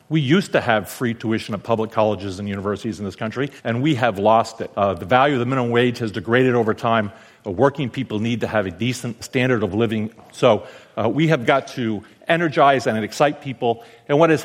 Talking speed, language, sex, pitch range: 225 wpm, English, male, 110-140 Hz